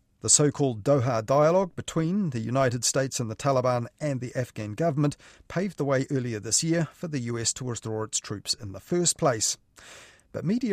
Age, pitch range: 40-59, 115-150 Hz